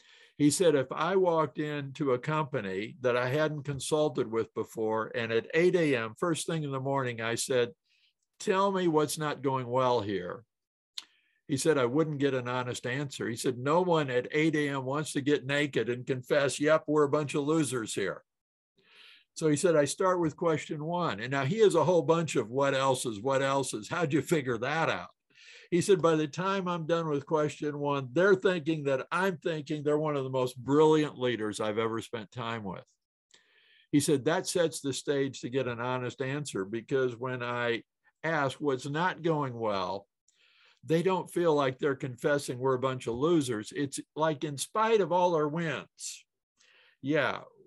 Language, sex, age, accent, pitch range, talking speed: English, male, 60-79, American, 130-160 Hz, 195 wpm